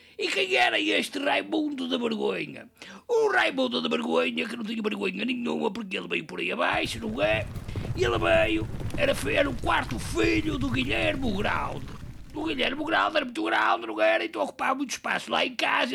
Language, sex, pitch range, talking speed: English, male, 230-320 Hz, 200 wpm